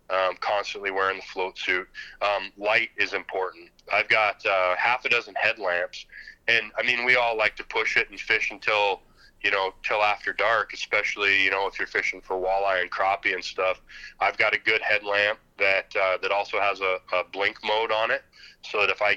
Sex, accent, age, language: male, American, 30-49, English